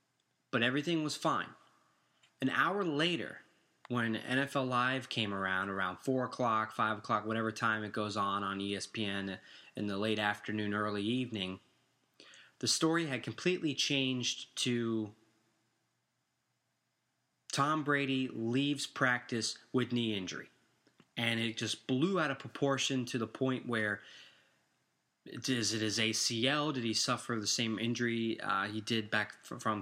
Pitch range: 110-130 Hz